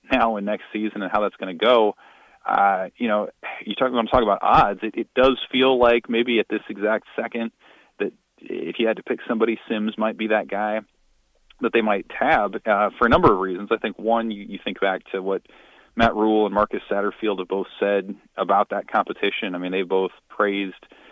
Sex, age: male, 30-49